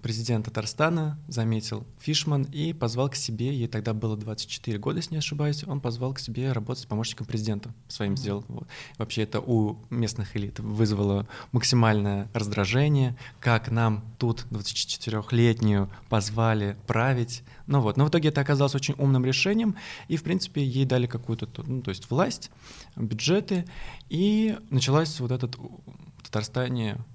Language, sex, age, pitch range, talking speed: Russian, male, 20-39, 110-135 Hz, 150 wpm